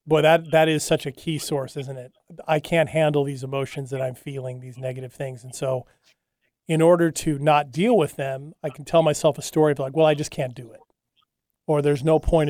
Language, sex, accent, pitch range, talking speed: English, male, American, 140-165 Hz, 230 wpm